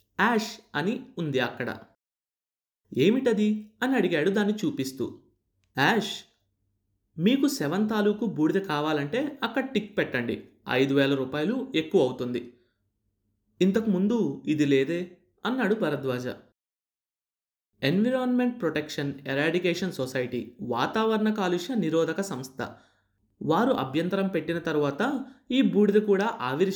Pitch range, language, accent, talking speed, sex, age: 130-215 Hz, Telugu, native, 100 wpm, male, 30-49